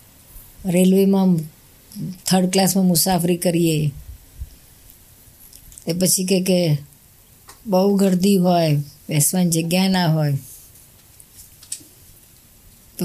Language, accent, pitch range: Gujarati, native, 130-185 Hz